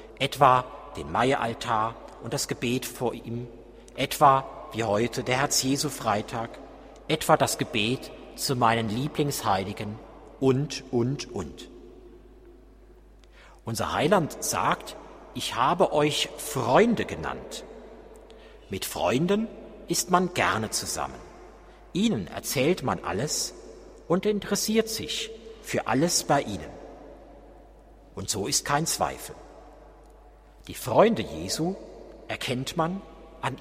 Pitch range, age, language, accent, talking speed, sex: 110-155 Hz, 50-69, German, German, 105 wpm, male